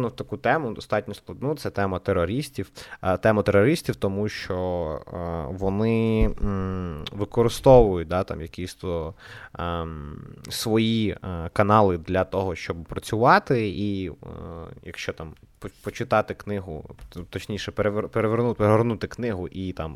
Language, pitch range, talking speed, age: Ukrainian, 90-115 Hz, 105 wpm, 20-39